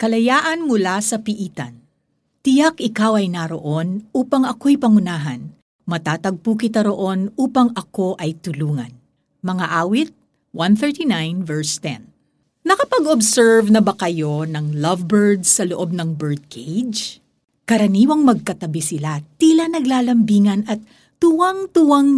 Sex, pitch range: female, 175-265 Hz